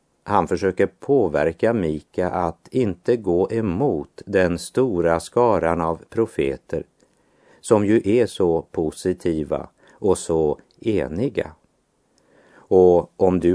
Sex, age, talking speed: male, 50-69, 105 wpm